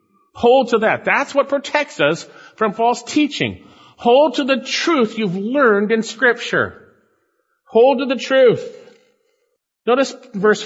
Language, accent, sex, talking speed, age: English, American, male, 135 wpm, 50-69